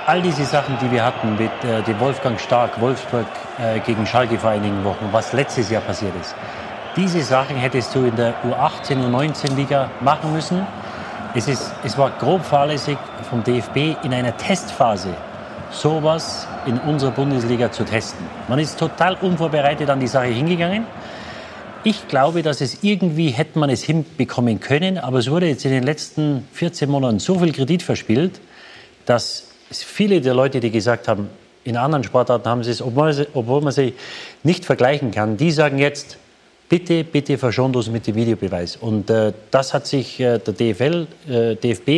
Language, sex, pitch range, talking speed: German, male, 120-150 Hz, 170 wpm